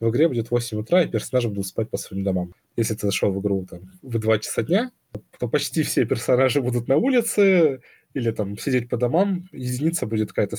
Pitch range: 100-130 Hz